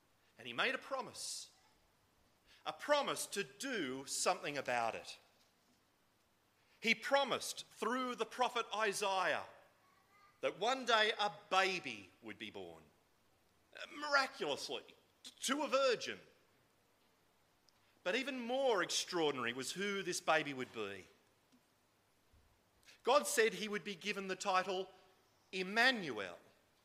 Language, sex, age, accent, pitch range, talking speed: English, male, 40-59, Australian, 160-255 Hz, 110 wpm